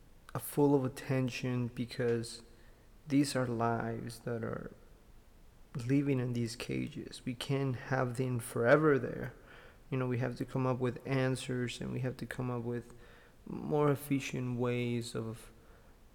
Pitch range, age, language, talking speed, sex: 120-130 Hz, 30-49, English, 145 wpm, male